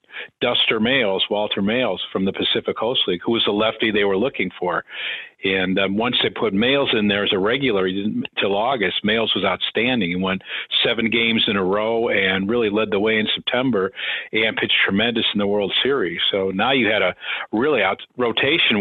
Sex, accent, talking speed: male, American, 200 wpm